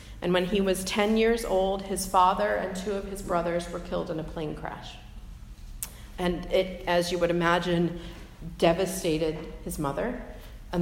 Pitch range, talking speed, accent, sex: 170-215 Hz, 165 wpm, American, female